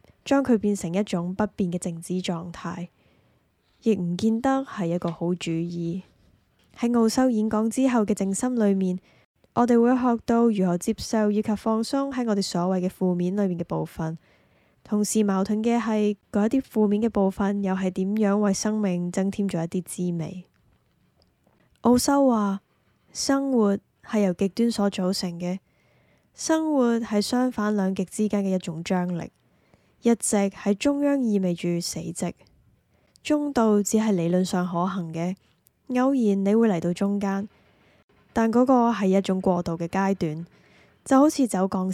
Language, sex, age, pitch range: Chinese, female, 10-29, 180-225 Hz